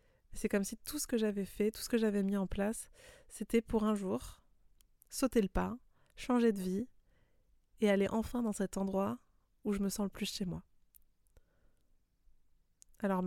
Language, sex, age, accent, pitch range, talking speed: French, female, 20-39, French, 190-230 Hz, 180 wpm